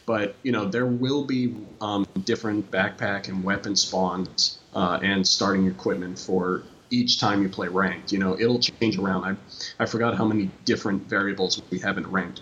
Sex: male